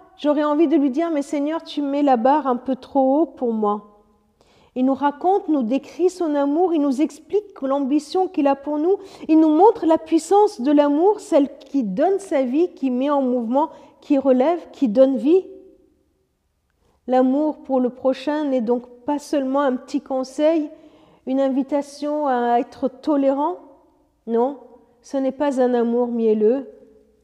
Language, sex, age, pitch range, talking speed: French, female, 50-69, 220-290 Hz, 175 wpm